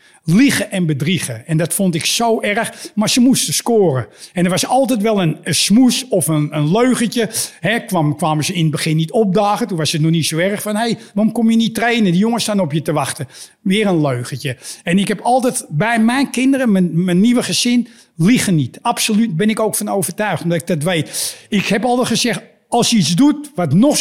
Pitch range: 175-230 Hz